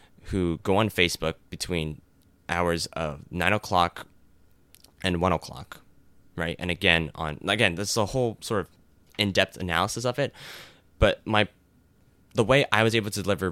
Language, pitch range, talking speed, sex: English, 85-105 Hz, 165 wpm, male